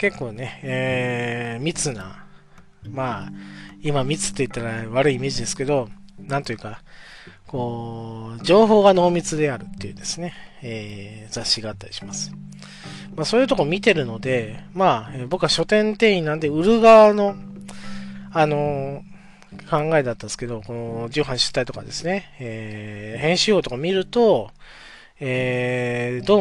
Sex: male